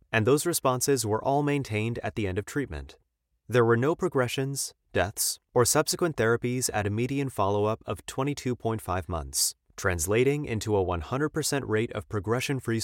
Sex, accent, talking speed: male, American, 155 wpm